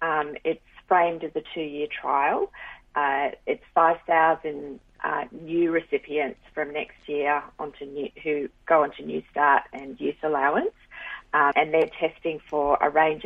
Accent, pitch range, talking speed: Australian, 150-185 Hz, 150 wpm